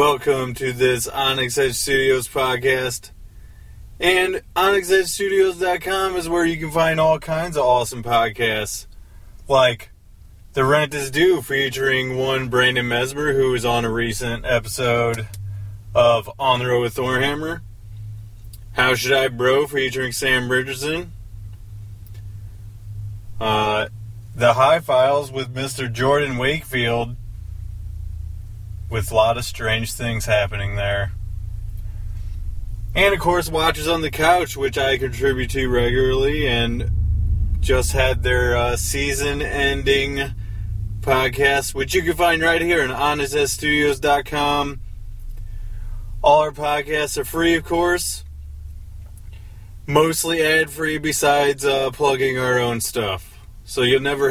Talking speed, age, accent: 120 wpm, 30-49, American